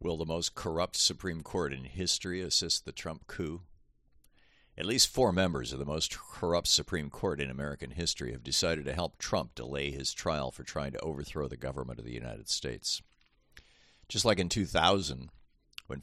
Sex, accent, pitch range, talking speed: male, American, 65-80 Hz, 180 wpm